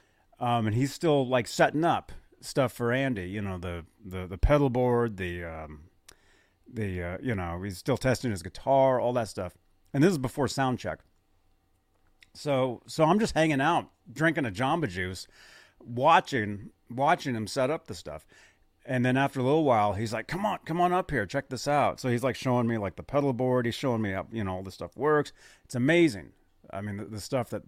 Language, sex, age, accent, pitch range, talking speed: English, male, 40-59, American, 100-140 Hz, 210 wpm